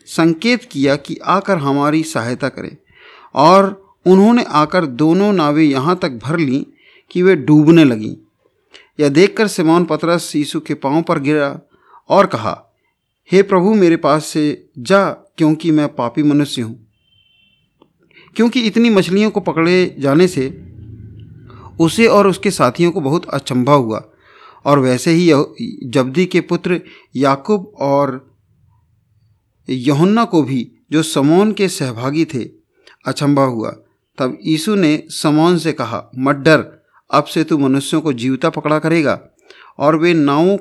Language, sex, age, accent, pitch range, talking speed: Hindi, male, 50-69, native, 140-180 Hz, 140 wpm